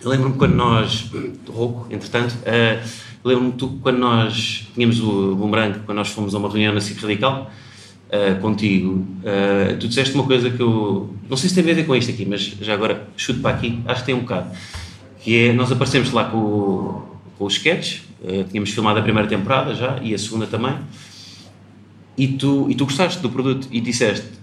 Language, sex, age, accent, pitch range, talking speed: Portuguese, male, 30-49, Portuguese, 105-135 Hz, 205 wpm